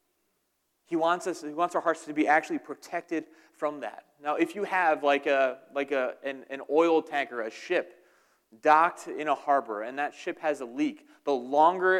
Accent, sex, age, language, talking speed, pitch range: American, male, 30-49, English, 195 wpm, 135-160 Hz